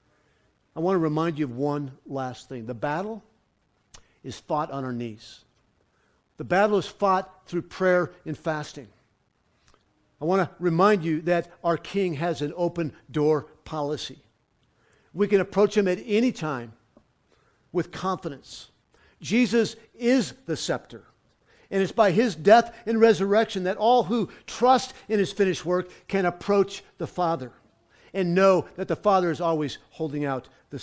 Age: 50-69